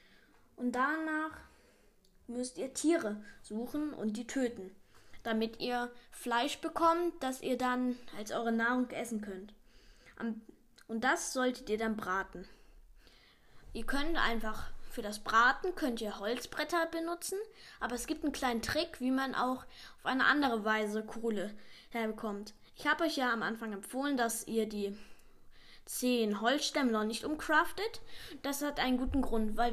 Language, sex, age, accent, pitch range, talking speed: German, female, 20-39, German, 220-290 Hz, 145 wpm